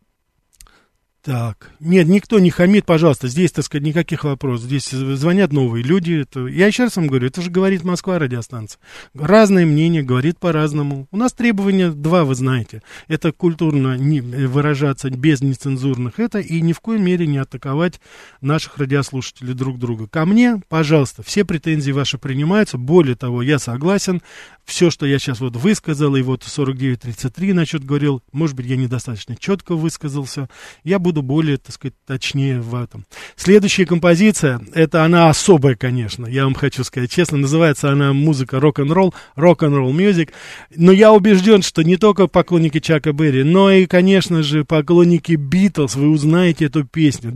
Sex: male